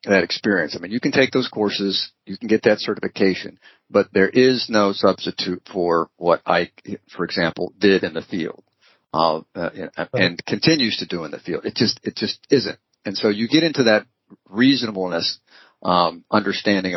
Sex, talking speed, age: male, 175 wpm, 50-69